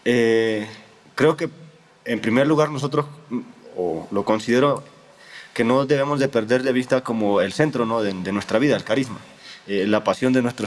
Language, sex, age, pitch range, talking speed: Spanish, male, 20-39, 110-135 Hz, 170 wpm